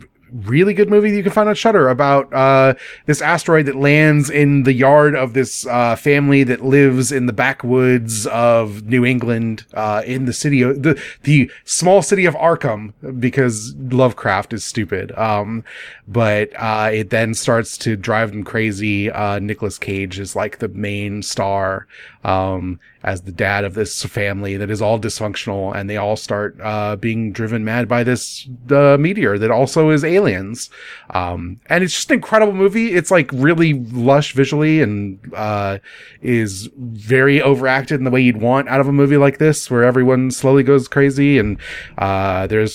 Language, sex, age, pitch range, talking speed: English, male, 30-49, 110-145 Hz, 180 wpm